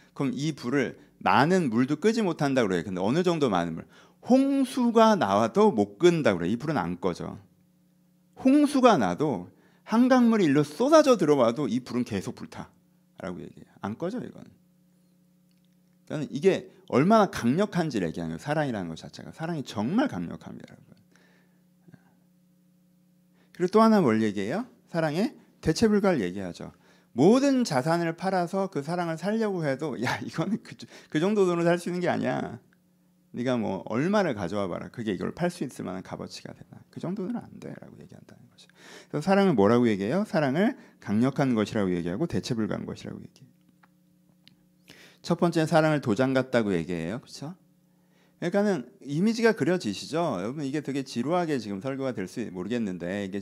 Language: Korean